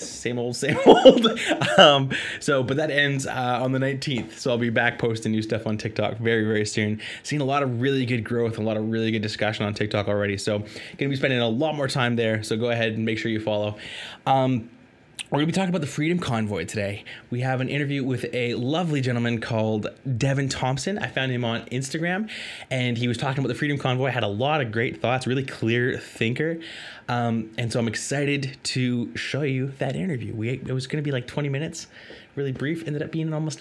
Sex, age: male, 20-39